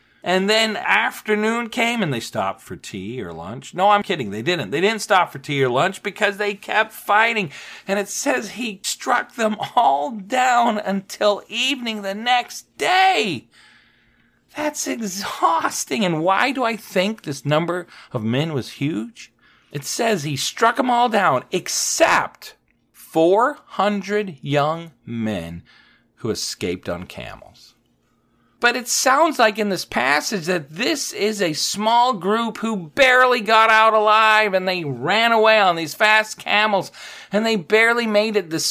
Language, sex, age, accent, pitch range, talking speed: English, male, 40-59, American, 145-220 Hz, 155 wpm